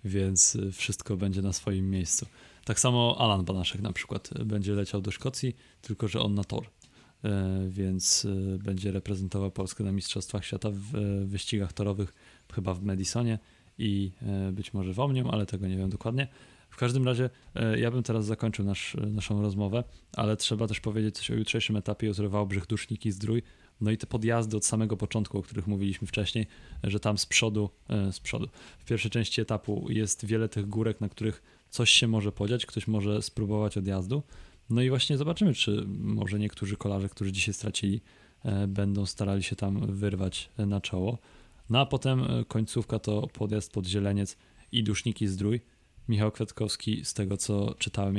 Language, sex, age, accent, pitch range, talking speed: Polish, male, 20-39, native, 100-110 Hz, 170 wpm